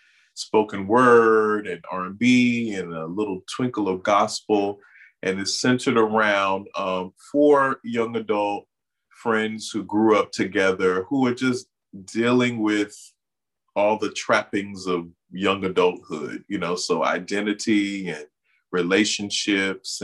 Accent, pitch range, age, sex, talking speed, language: American, 95-120 Hz, 30-49, male, 125 wpm, English